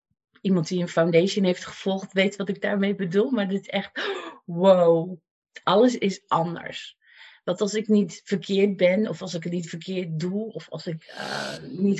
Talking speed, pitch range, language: 185 wpm, 165-200 Hz, Dutch